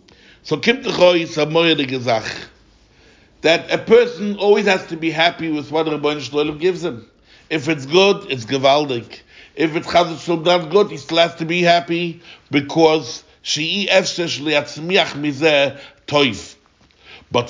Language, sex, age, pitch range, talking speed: English, male, 60-79, 145-185 Hz, 115 wpm